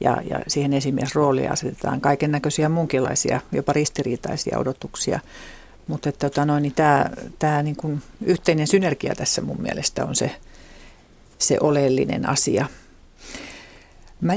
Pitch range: 145-180 Hz